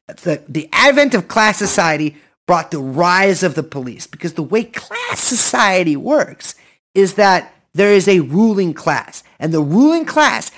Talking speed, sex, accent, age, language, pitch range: 165 wpm, male, American, 30-49, English, 160-230 Hz